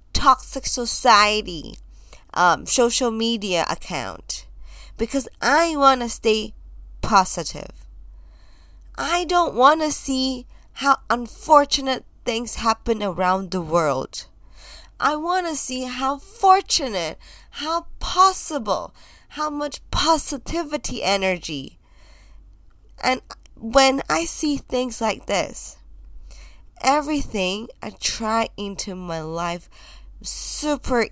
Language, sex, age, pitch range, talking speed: English, female, 20-39, 155-250 Hz, 95 wpm